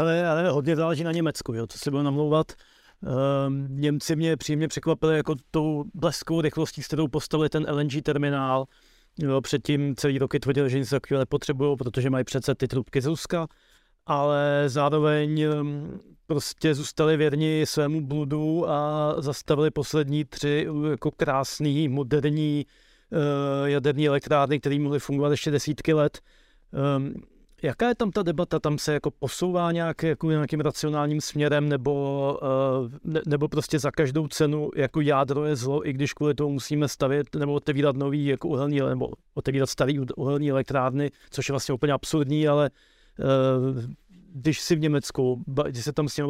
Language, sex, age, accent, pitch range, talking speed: Czech, male, 30-49, native, 140-155 Hz, 160 wpm